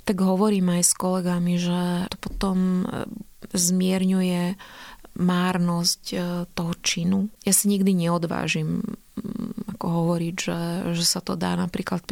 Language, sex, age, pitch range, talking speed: Slovak, female, 30-49, 170-190 Hz, 120 wpm